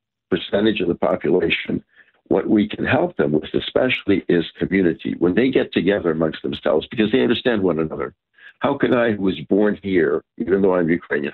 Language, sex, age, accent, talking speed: English, male, 60-79, American, 185 wpm